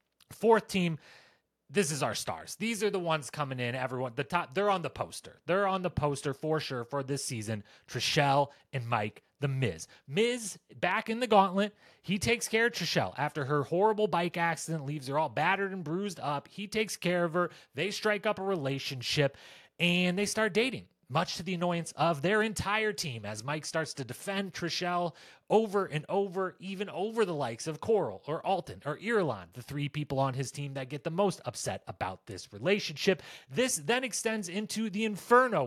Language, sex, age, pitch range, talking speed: English, male, 30-49, 140-195 Hz, 195 wpm